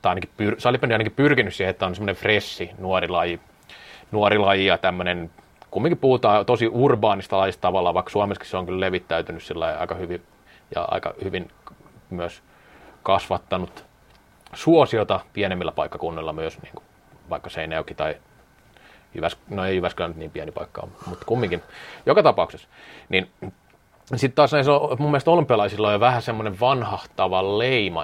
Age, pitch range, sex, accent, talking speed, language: 30-49, 90-115 Hz, male, native, 150 wpm, Finnish